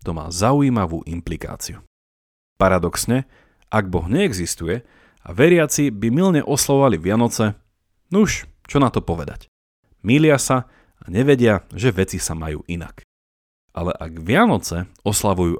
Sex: male